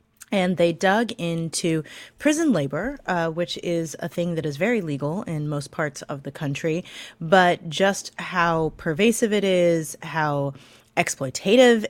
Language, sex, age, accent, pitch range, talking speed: English, female, 20-39, American, 160-195 Hz, 145 wpm